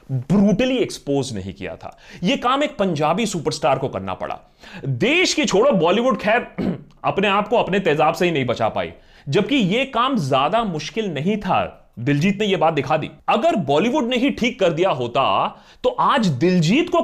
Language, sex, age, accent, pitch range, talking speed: Hindi, male, 30-49, native, 175-270 Hz, 185 wpm